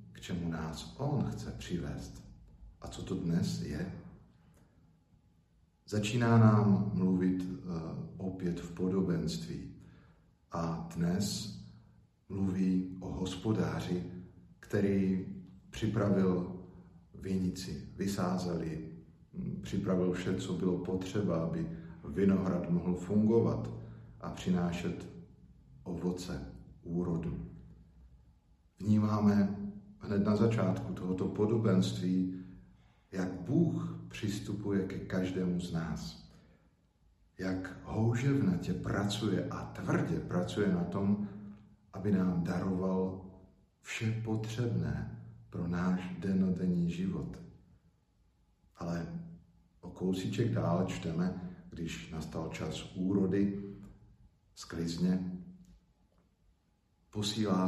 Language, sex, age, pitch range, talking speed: Slovak, male, 50-69, 90-100 Hz, 85 wpm